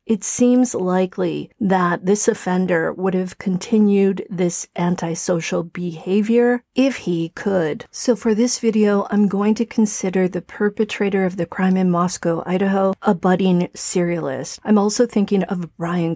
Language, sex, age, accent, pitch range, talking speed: English, female, 40-59, American, 175-215 Hz, 145 wpm